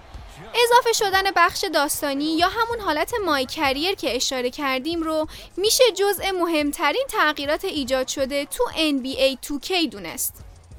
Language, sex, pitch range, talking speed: Persian, female, 275-375 Hz, 120 wpm